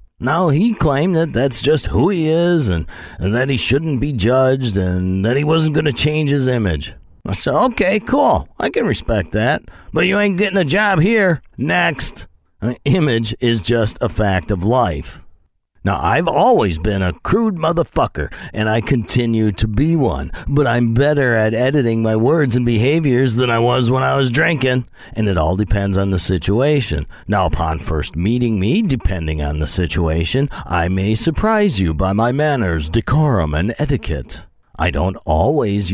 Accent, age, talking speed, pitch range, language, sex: American, 50-69, 180 wpm, 90-130 Hz, English, male